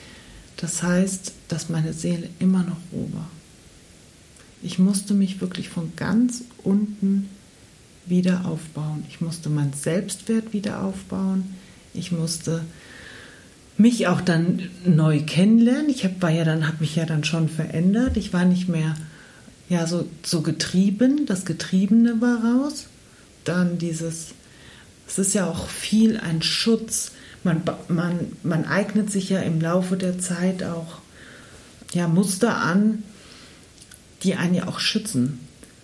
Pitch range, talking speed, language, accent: 165-195 Hz, 130 wpm, German, German